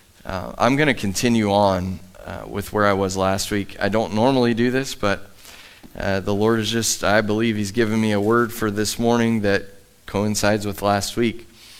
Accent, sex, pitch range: American, male, 105-135 Hz